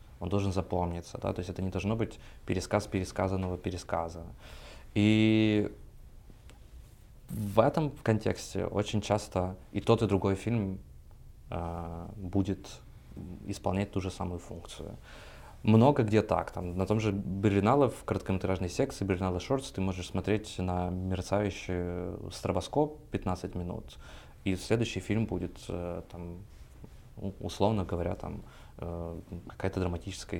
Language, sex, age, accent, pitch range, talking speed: Ukrainian, male, 20-39, native, 90-105 Hz, 120 wpm